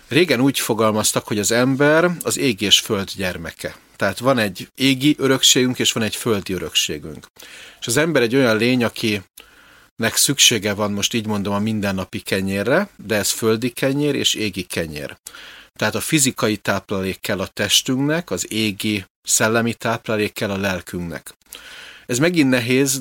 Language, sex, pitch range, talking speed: Slovak, male, 100-125 Hz, 155 wpm